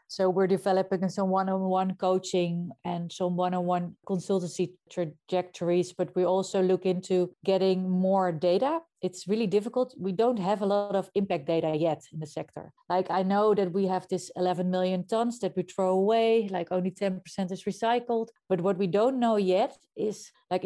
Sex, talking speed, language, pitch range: female, 175 wpm, English, 180-205 Hz